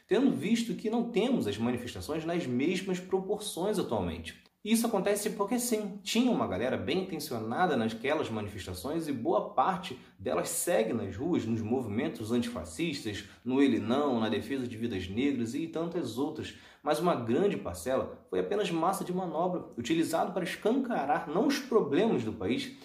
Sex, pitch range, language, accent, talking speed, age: male, 130-200 Hz, Portuguese, Brazilian, 160 wpm, 30-49